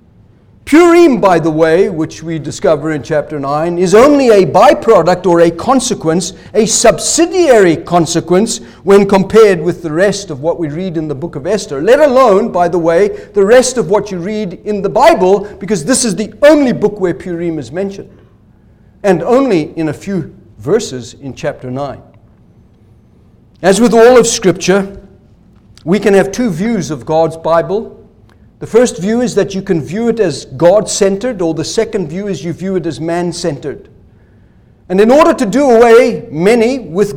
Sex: male